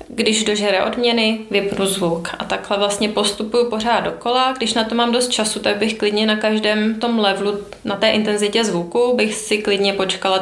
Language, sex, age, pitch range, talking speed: Czech, female, 20-39, 195-225 Hz, 185 wpm